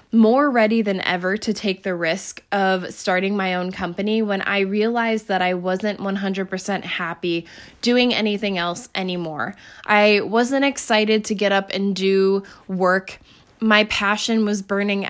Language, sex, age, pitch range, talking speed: English, female, 10-29, 180-220 Hz, 150 wpm